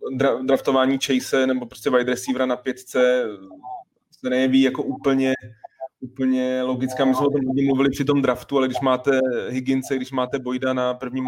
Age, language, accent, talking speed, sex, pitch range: 20-39, Czech, native, 170 wpm, male, 125-135 Hz